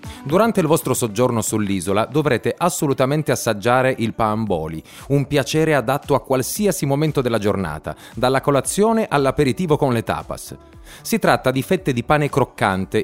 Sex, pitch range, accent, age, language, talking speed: male, 105-145 Hz, native, 30-49, Italian, 145 wpm